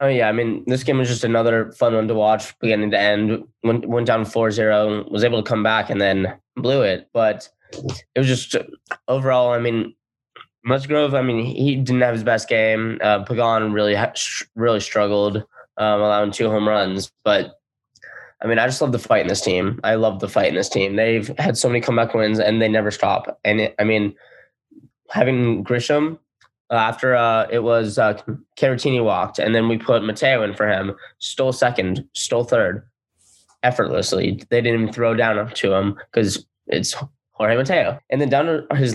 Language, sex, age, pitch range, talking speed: English, male, 10-29, 105-125 Hz, 195 wpm